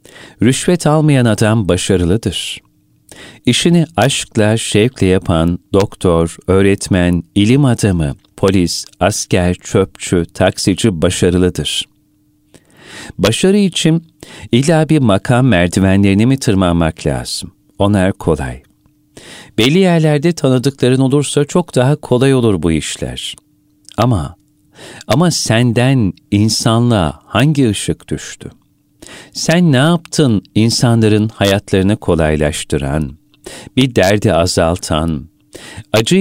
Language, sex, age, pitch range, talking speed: Turkish, male, 40-59, 90-130 Hz, 90 wpm